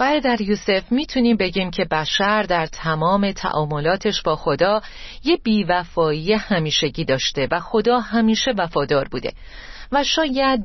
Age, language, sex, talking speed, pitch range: 40-59, Persian, female, 125 wpm, 170-240 Hz